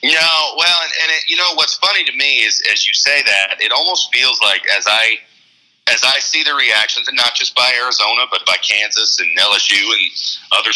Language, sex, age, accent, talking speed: English, male, 40-59, American, 230 wpm